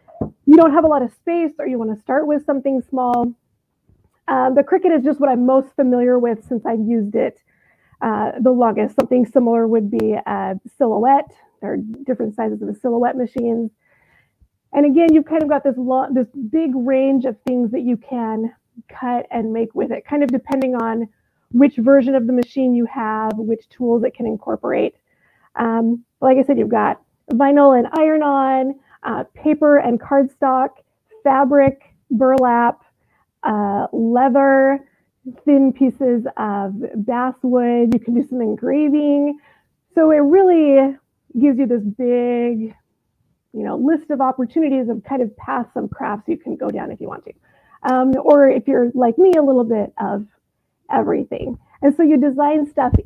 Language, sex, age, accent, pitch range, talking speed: English, female, 30-49, American, 235-280 Hz, 170 wpm